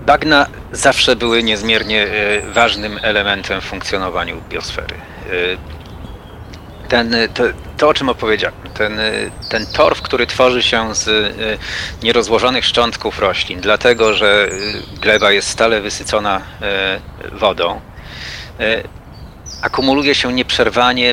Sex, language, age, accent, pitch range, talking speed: male, Polish, 40-59, native, 95-120 Hz, 100 wpm